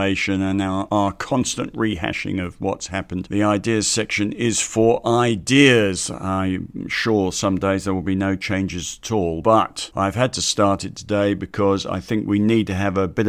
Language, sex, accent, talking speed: English, male, British, 185 wpm